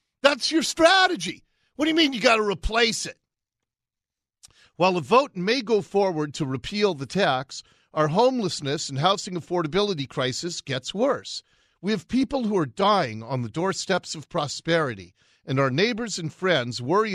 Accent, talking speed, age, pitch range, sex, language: American, 165 wpm, 40-59, 135-200 Hz, male, English